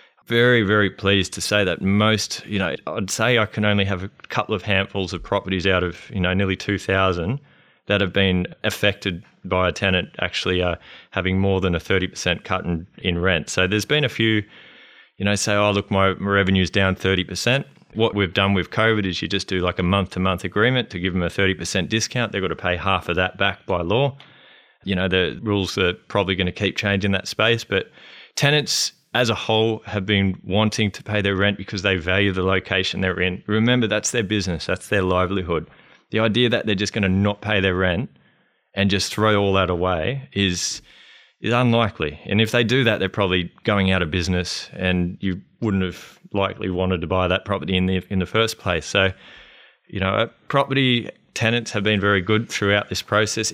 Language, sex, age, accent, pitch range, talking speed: English, male, 20-39, Australian, 95-110 Hz, 210 wpm